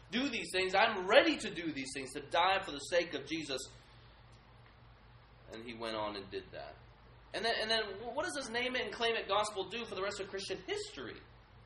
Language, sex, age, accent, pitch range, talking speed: English, male, 20-39, American, 125-215 Hz, 220 wpm